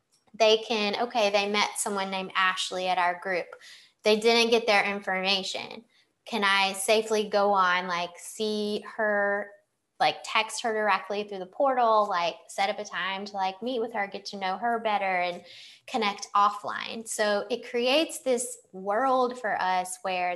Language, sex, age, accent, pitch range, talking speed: English, female, 20-39, American, 185-230 Hz, 170 wpm